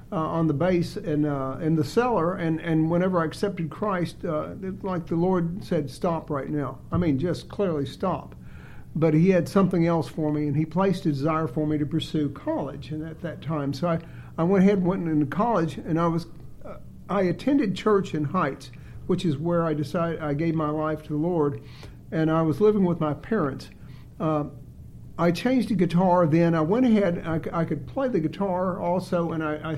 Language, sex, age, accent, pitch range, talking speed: English, male, 60-79, American, 150-180 Hz, 210 wpm